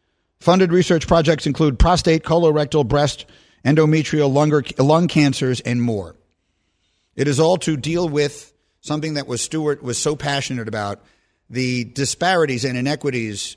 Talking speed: 135 wpm